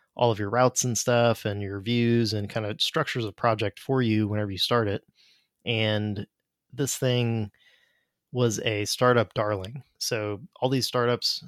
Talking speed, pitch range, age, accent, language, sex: 165 wpm, 105-120 Hz, 20-39, American, English, male